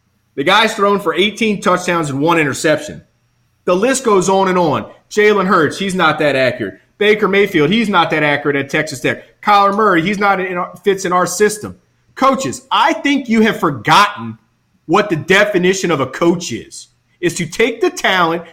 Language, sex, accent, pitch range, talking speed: English, male, American, 155-210 Hz, 190 wpm